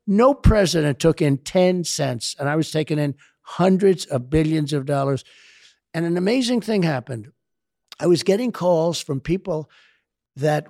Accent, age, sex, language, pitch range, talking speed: American, 60-79, male, English, 140-170 Hz, 155 wpm